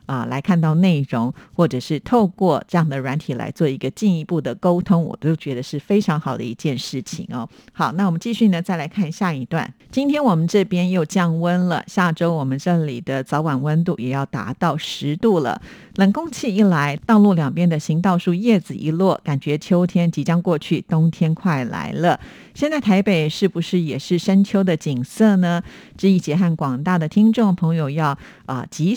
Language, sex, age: Chinese, female, 50-69